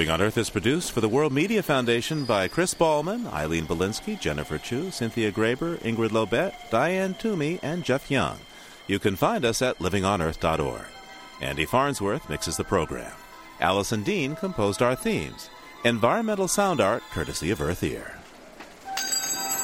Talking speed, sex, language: 150 wpm, male, English